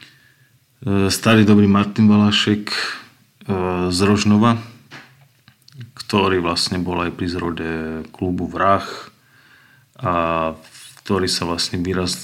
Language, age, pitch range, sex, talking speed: Slovak, 30-49, 85-115 Hz, male, 95 wpm